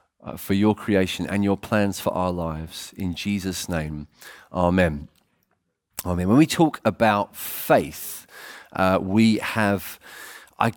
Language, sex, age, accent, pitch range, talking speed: English, male, 30-49, British, 100-120 Hz, 130 wpm